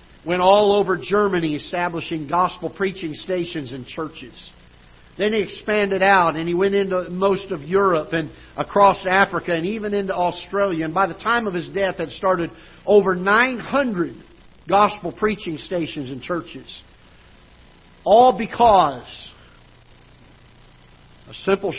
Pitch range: 160-215 Hz